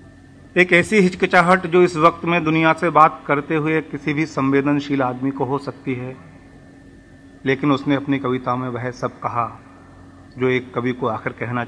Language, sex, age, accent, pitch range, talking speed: Hindi, male, 40-59, native, 130-155 Hz, 175 wpm